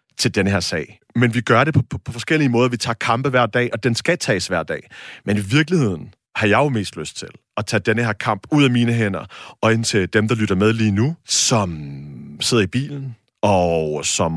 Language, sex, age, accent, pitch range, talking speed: Danish, male, 30-49, native, 100-130 Hz, 240 wpm